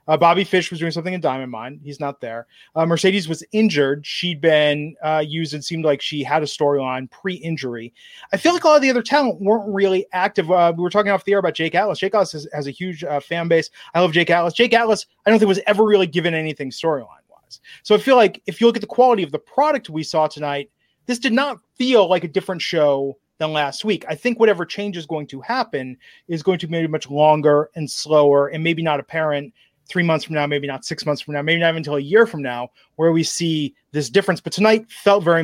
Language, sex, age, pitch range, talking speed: English, male, 30-49, 145-195 Hz, 250 wpm